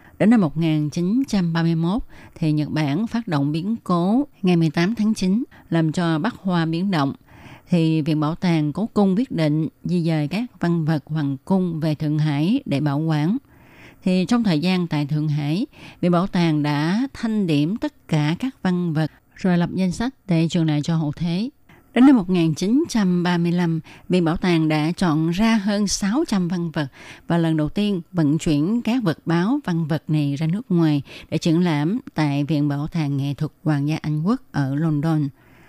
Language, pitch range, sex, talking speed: Vietnamese, 155-195 Hz, female, 190 wpm